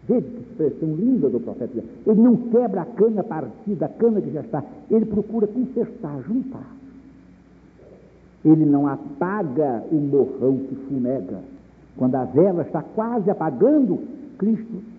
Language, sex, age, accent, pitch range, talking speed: Portuguese, male, 60-79, Brazilian, 160-240 Hz, 140 wpm